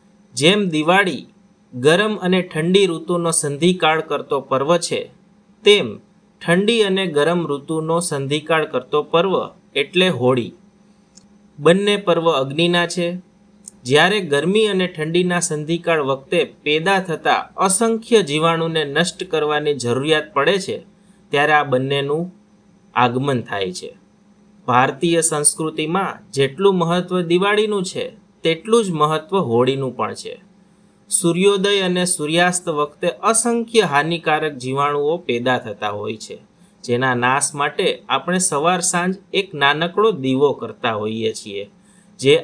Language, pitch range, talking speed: Gujarati, 145-200 Hz, 115 wpm